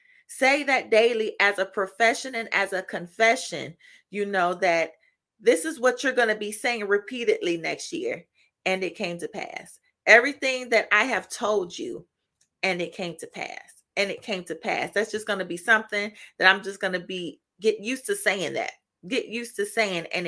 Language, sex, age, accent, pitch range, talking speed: English, female, 30-49, American, 180-225 Hz, 200 wpm